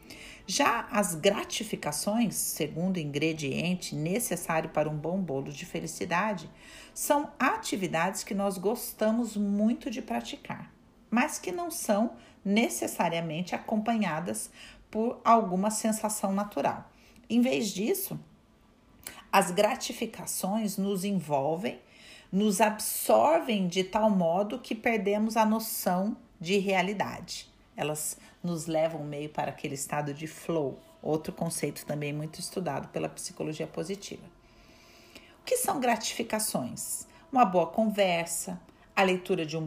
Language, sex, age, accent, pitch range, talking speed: Portuguese, female, 50-69, Brazilian, 160-215 Hz, 115 wpm